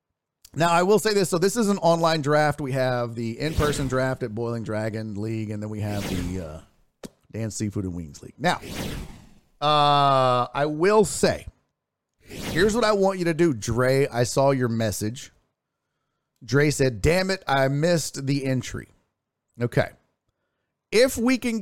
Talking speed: 165 wpm